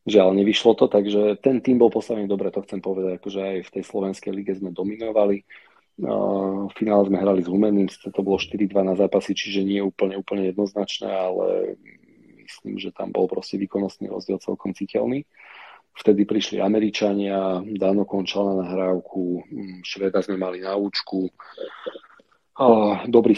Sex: male